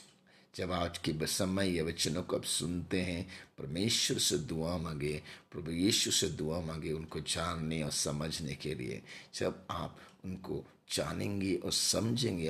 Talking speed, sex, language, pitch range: 145 wpm, male, Hindi, 80-100 Hz